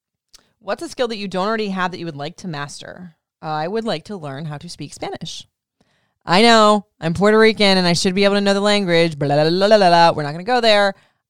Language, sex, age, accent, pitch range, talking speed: English, female, 20-39, American, 155-195 Hz, 270 wpm